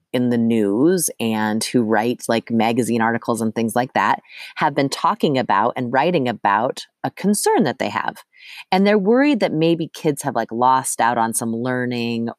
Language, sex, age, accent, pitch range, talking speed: English, female, 30-49, American, 115-160 Hz, 185 wpm